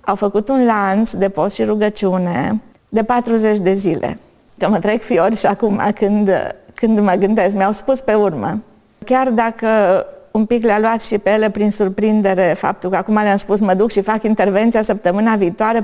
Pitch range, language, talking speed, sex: 200-235 Hz, Romanian, 185 wpm, female